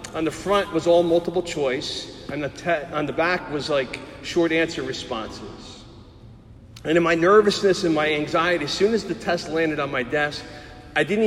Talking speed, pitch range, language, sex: 190 wpm, 130-165 Hz, English, male